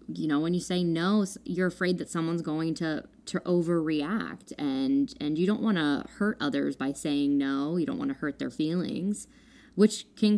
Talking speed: 195 wpm